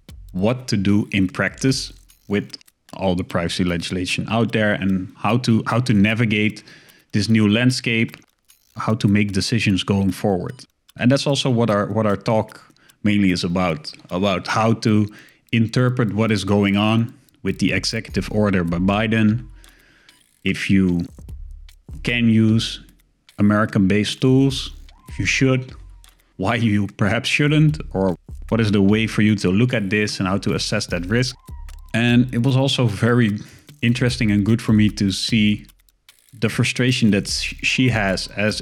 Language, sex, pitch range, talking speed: English, male, 95-115 Hz, 155 wpm